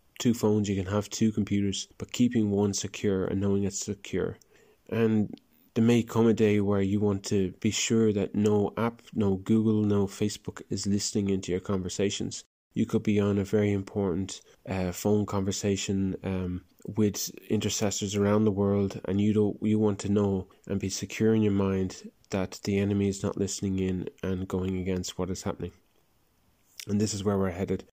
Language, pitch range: English, 95-105 Hz